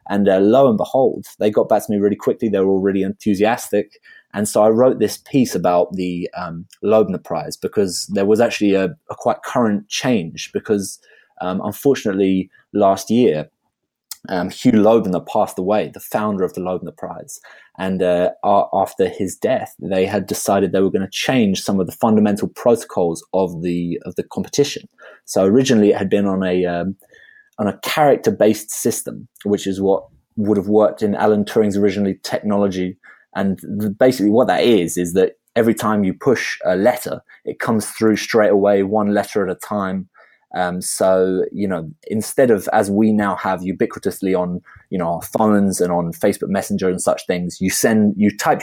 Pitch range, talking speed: 95-105 Hz, 185 wpm